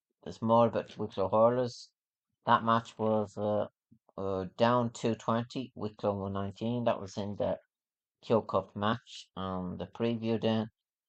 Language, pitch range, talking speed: English, 95-110 Hz, 145 wpm